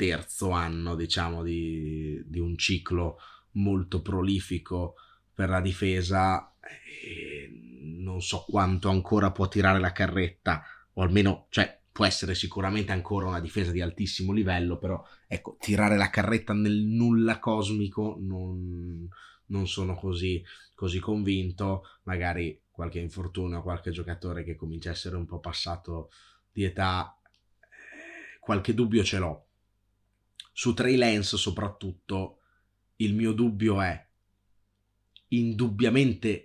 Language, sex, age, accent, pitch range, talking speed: Italian, male, 20-39, native, 90-105 Hz, 120 wpm